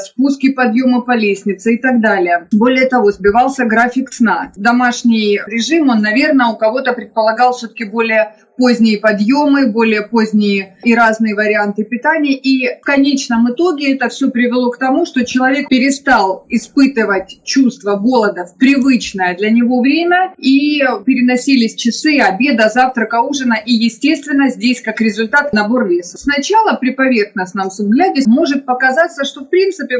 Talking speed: 140 wpm